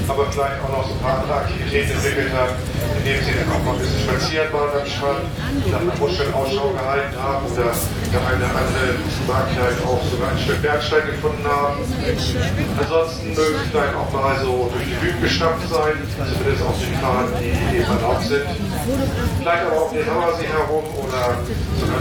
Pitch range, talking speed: 105-140 Hz, 185 wpm